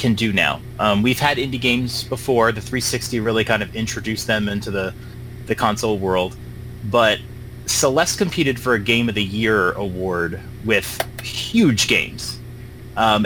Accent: American